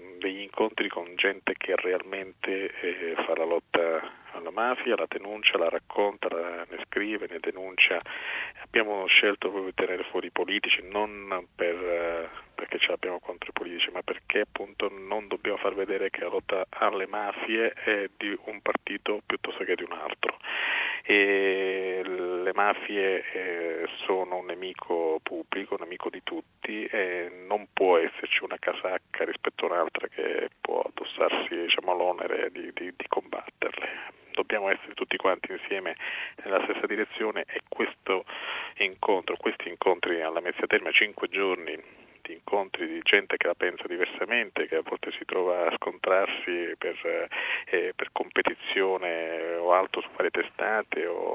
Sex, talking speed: male, 150 wpm